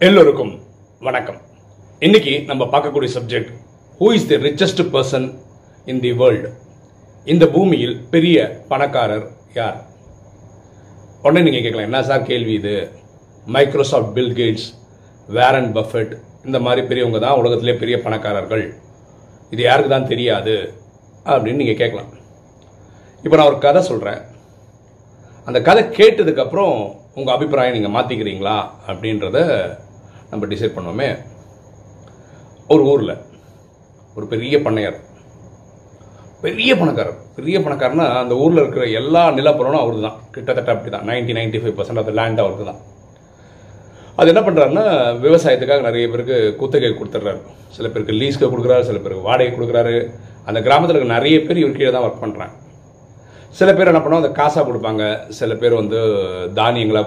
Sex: male